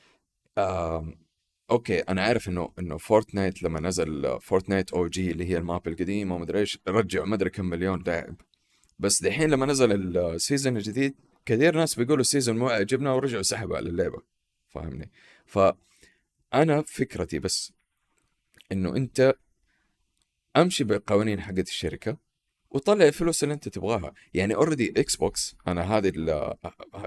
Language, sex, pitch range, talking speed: Arabic, male, 90-130 Hz, 135 wpm